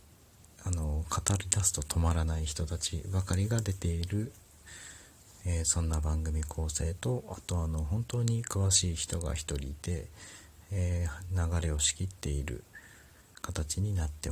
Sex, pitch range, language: male, 80-100 Hz, Japanese